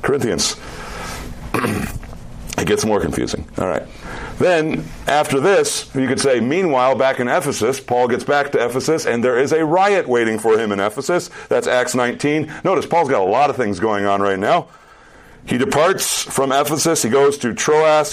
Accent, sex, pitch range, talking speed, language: American, male, 120-145 Hz, 175 wpm, English